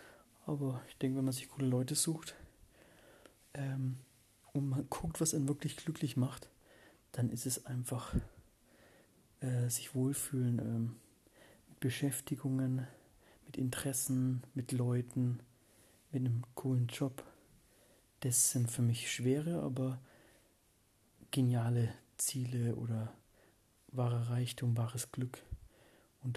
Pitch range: 120-140 Hz